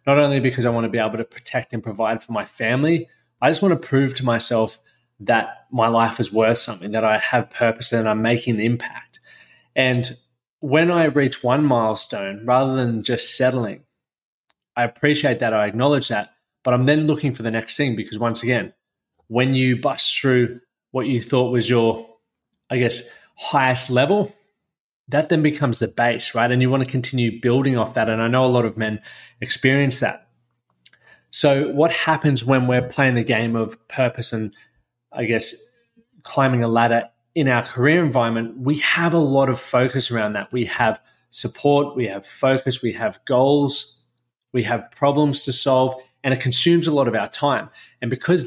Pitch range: 115-140 Hz